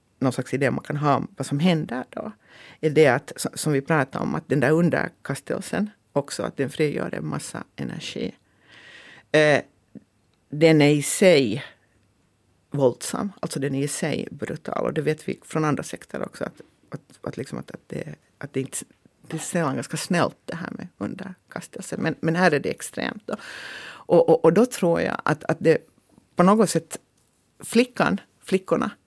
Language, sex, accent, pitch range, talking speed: Finnish, female, Swedish, 145-185 Hz, 185 wpm